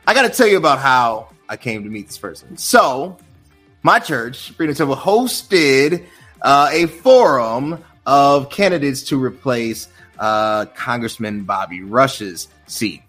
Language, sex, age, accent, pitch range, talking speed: English, male, 30-49, American, 125-195 Hz, 140 wpm